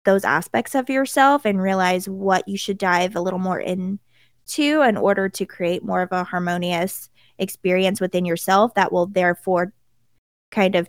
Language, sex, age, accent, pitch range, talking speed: English, female, 20-39, American, 180-210 Hz, 165 wpm